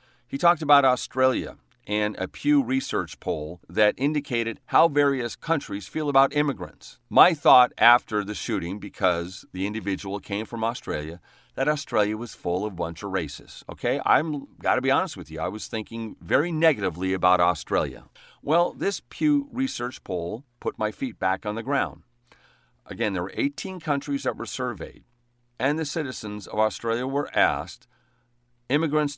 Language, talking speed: English, 165 wpm